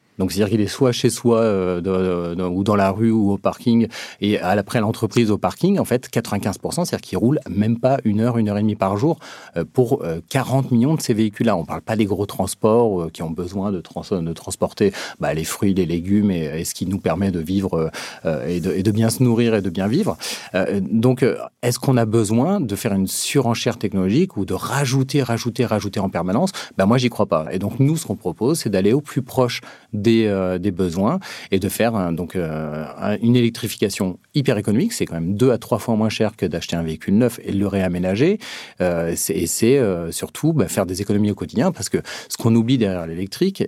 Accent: French